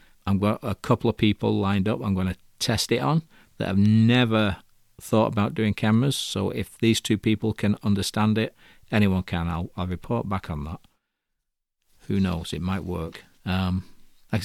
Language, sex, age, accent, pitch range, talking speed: English, male, 40-59, British, 90-110 Hz, 185 wpm